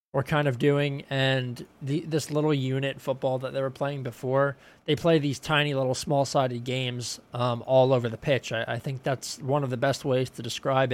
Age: 20-39